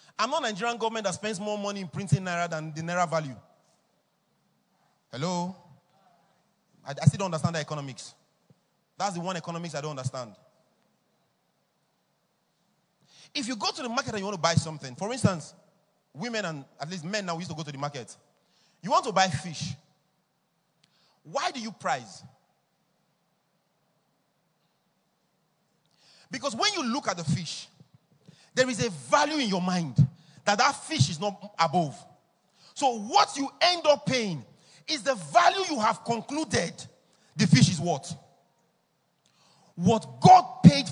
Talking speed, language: 155 wpm, English